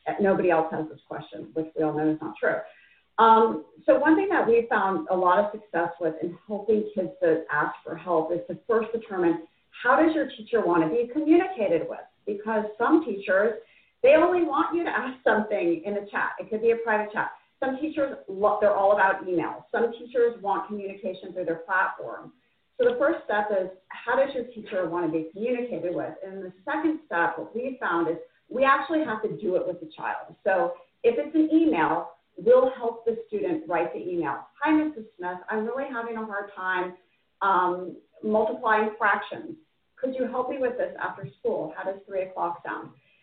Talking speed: 200 wpm